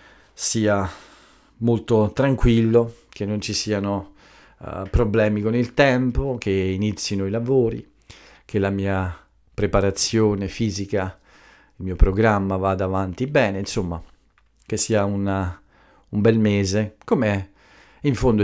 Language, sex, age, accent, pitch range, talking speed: Italian, male, 40-59, native, 90-115 Hz, 115 wpm